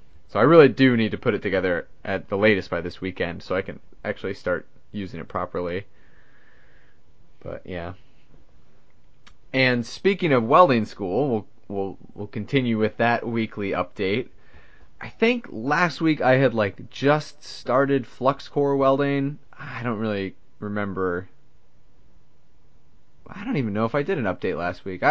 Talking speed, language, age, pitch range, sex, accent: 155 wpm, English, 20-39, 105-130 Hz, male, American